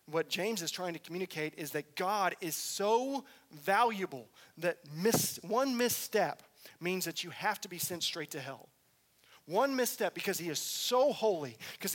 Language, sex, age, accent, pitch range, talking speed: English, male, 40-59, American, 140-180 Hz, 165 wpm